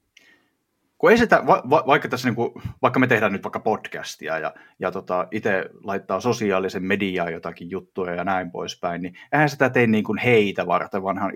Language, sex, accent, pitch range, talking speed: Finnish, male, native, 95-130 Hz, 170 wpm